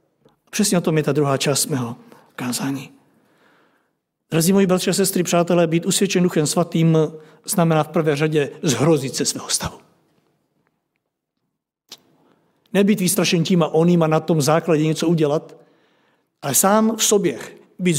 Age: 60-79